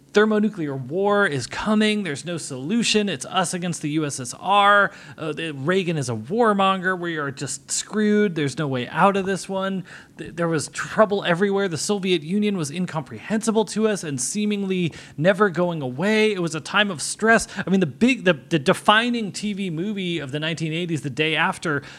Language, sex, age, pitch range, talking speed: English, male, 30-49, 155-210 Hz, 175 wpm